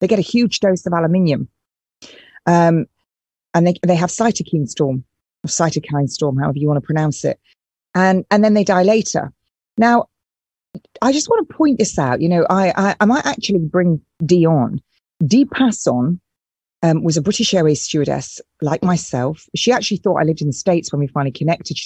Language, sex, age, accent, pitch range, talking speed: English, female, 40-59, British, 145-200 Hz, 190 wpm